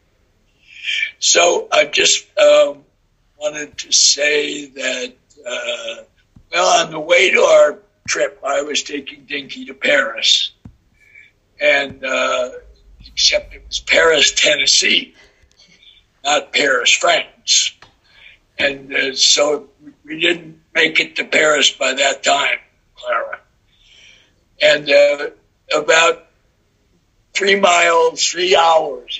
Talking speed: 105 wpm